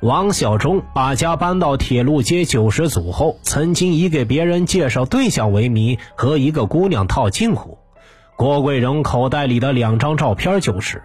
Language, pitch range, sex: Chinese, 115-155 Hz, male